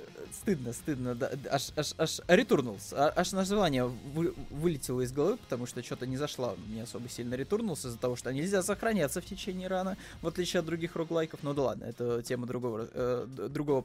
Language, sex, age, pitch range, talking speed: Russian, male, 20-39, 125-165 Hz, 185 wpm